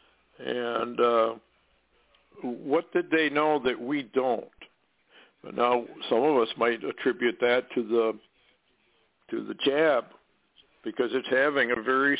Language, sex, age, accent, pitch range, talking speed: English, male, 60-79, American, 125-155 Hz, 130 wpm